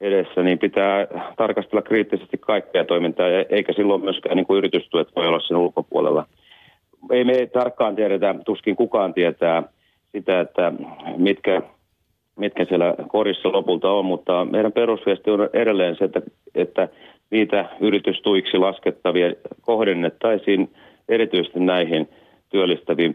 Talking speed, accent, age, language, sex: 115 wpm, native, 30-49, Finnish, male